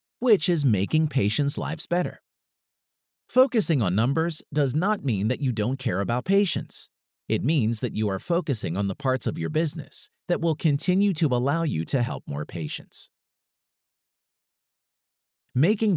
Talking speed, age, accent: 155 wpm, 40-59, American